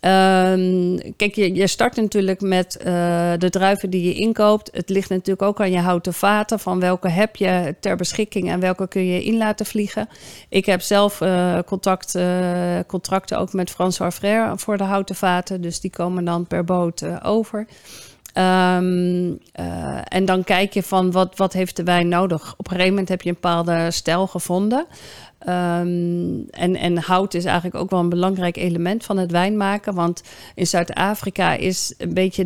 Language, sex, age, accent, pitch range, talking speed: Dutch, female, 40-59, Dutch, 175-195 Hz, 180 wpm